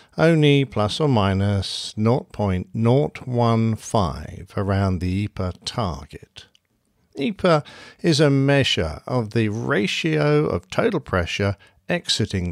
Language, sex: English, male